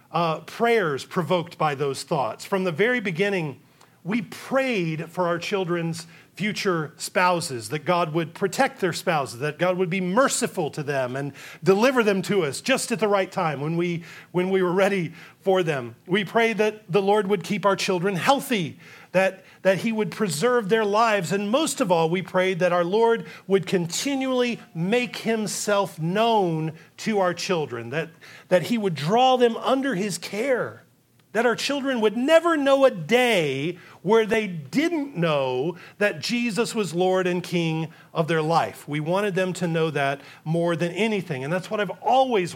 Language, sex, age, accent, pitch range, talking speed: English, male, 40-59, American, 165-220 Hz, 180 wpm